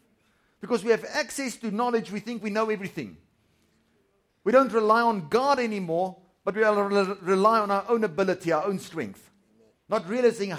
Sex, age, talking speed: male, 50-69, 165 wpm